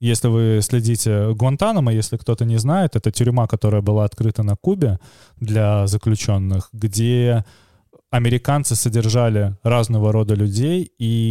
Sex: male